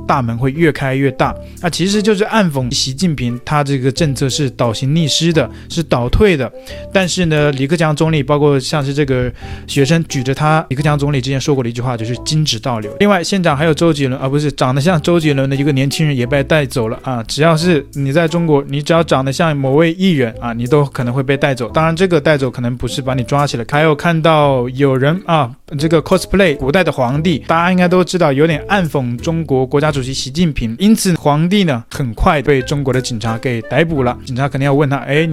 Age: 20-39